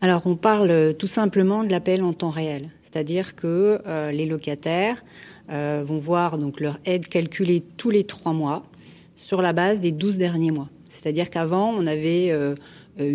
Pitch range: 155-190 Hz